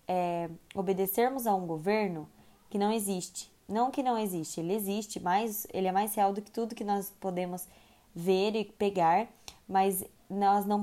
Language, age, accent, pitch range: Portuguese, 10-29, Brazilian, 185-220 Hz